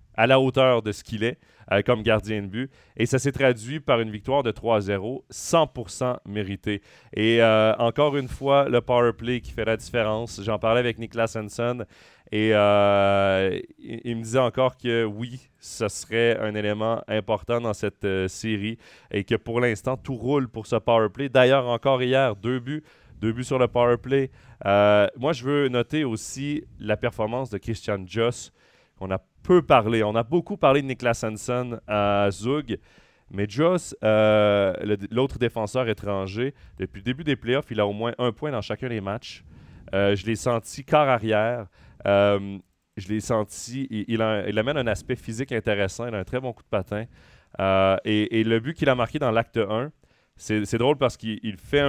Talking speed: 195 wpm